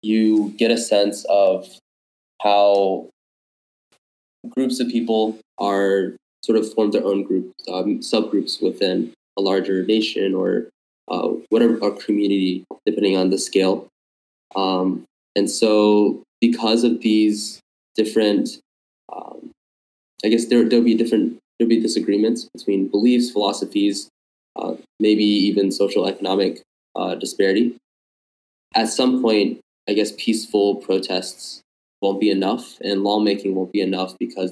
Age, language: 20-39, English